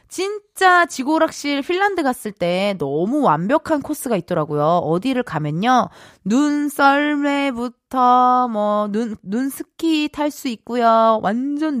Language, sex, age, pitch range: Korean, female, 20-39, 195-300 Hz